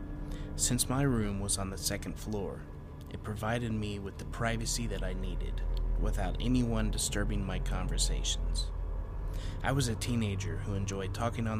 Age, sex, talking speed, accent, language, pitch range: 30-49, male, 155 wpm, American, English, 85-110 Hz